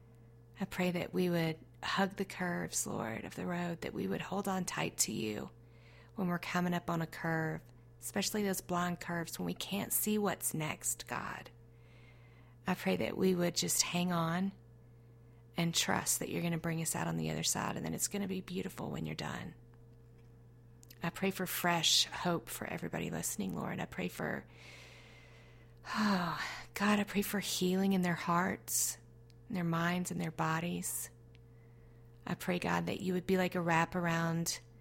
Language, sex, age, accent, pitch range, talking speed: English, female, 40-59, American, 115-185 Hz, 180 wpm